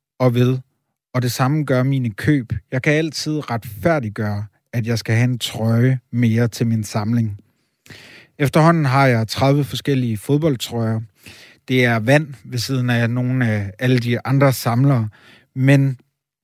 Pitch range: 115-145 Hz